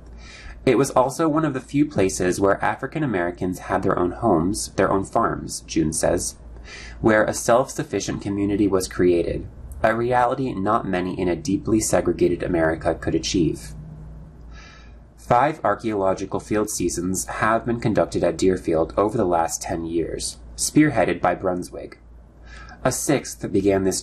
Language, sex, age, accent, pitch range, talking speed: English, male, 20-39, American, 85-120 Hz, 145 wpm